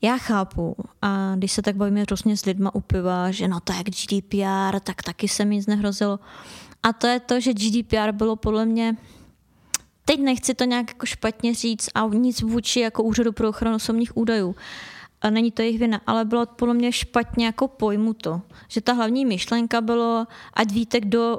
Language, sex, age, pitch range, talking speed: Czech, female, 20-39, 205-230 Hz, 190 wpm